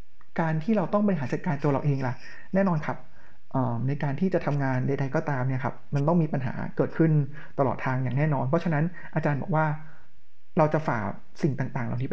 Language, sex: Thai, male